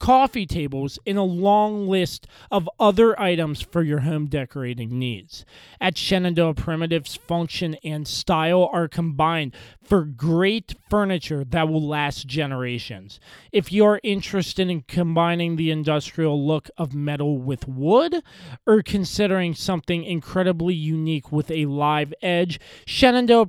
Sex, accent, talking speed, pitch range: male, American, 130 wpm, 150-195 Hz